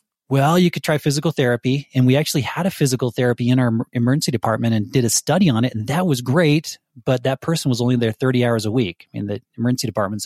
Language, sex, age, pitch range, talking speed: English, male, 30-49, 115-145 Hz, 250 wpm